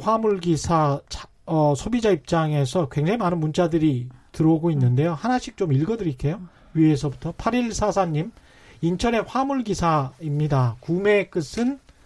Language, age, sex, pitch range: Korean, 30-49, male, 150-210 Hz